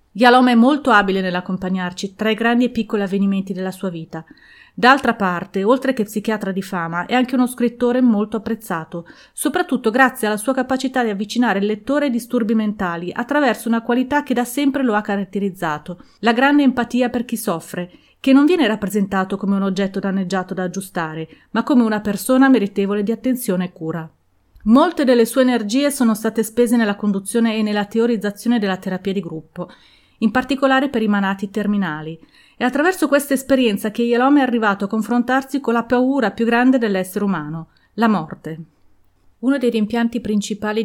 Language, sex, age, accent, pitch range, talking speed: Italian, female, 30-49, native, 190-245 Hz, 175 wpm